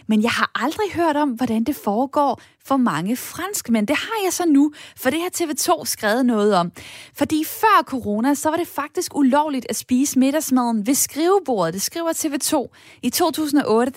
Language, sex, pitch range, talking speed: Danish, female, 220-290 Hz, 180 wpm